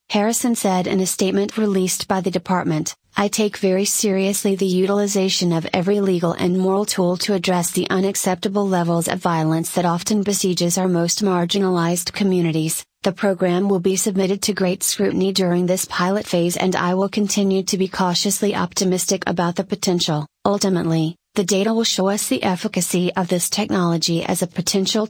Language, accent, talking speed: English, American, 170 wpm